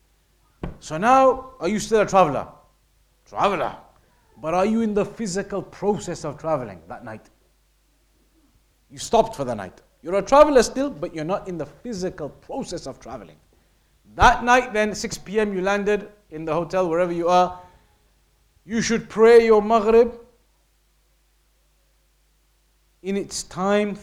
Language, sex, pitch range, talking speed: English, male, 165-225 Hz, 145 wpm